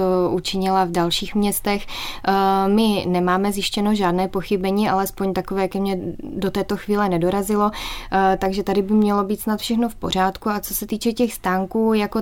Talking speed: 160 wpm